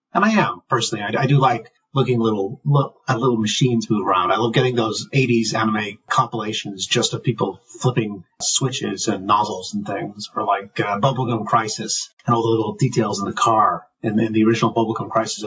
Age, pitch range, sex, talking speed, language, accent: 30-49, 115-150 Hz, male, 195 wpm, English, American